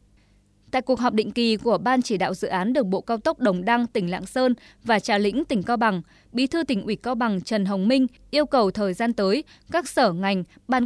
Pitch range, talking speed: 200-260 Hz, 245 wpm